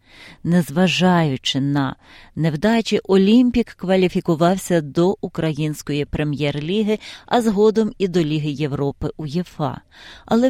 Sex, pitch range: female, 155-195 Hz